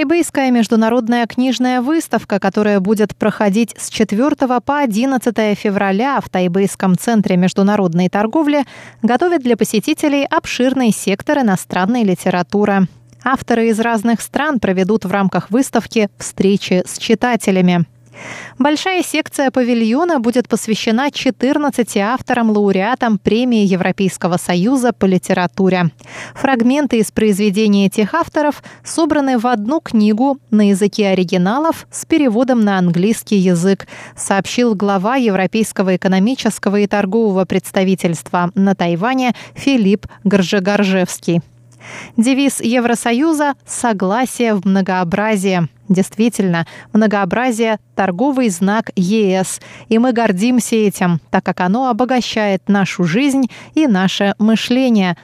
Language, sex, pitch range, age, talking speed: Russian, female, 195-250 Hz, 20-39, 105 wpm